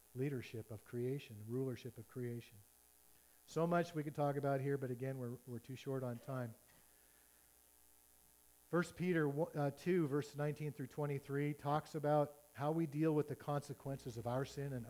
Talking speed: 165 wpm